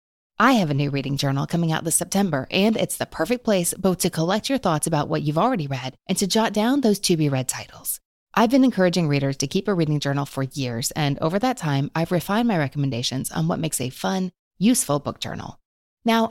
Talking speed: 220 wpm